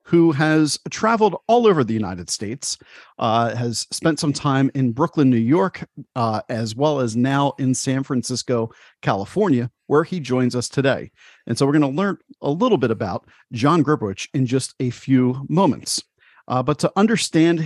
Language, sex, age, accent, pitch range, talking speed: English, male, 40-59, American, 125-155 Hz, 175 wpm